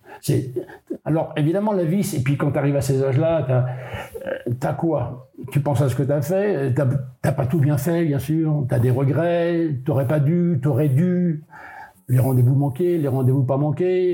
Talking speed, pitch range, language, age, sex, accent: 210 wpm, 130-175 Hz, French, 60-79, male, French